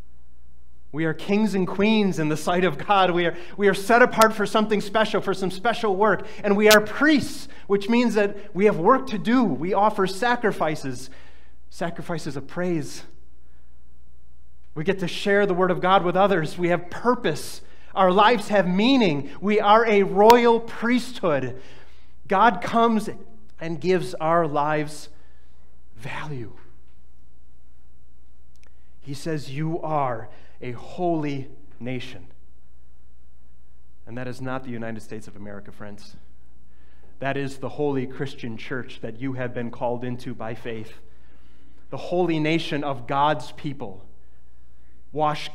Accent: American